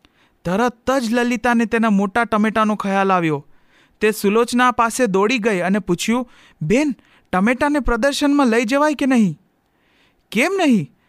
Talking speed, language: 130 wpm, Gujarati